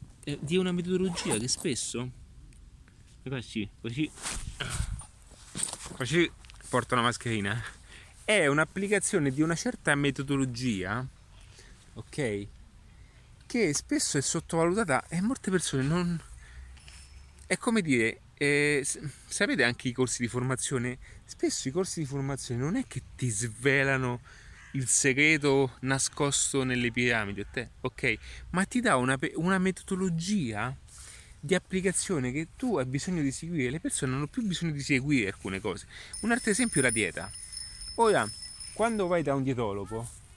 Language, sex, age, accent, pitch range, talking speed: Italian, male, 30-49, native, 115-160 Hz, 130 wpm